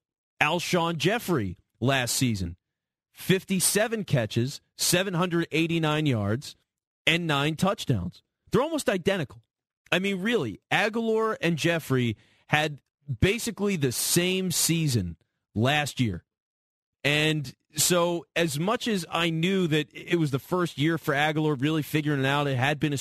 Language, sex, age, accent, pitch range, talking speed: English, male, 30-49, American, 130-170 Hz, 130 wpm